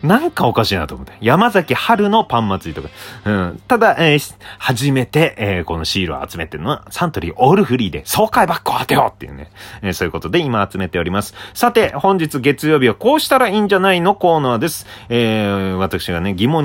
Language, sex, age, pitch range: Japanese, male, 30-49, 100-150 Hz